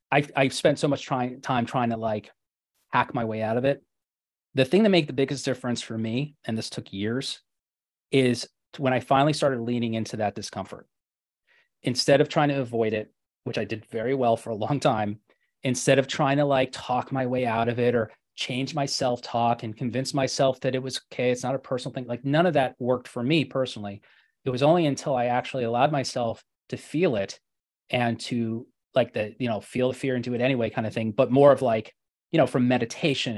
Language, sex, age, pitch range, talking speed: English, male, 30-49, 115-135 Hz, 220 wpm